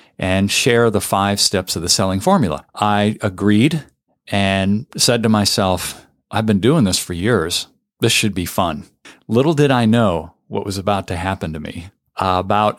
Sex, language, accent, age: male, English, American, 40-59